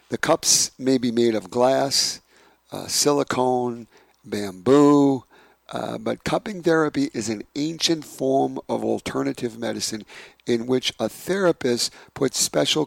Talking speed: 125 wpm